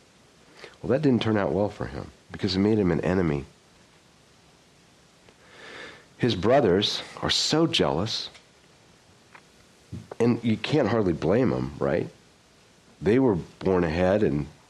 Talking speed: 125 wpm